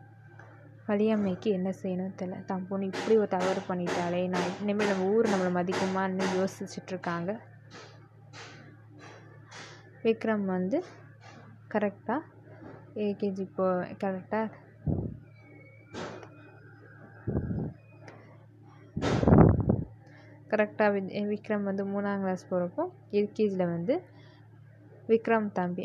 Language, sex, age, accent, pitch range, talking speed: Tamil, female, 20-39, native, 135-205 Hz, 70 wpm